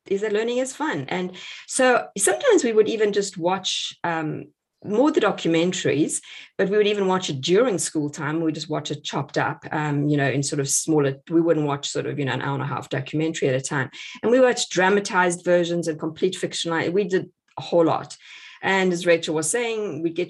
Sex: female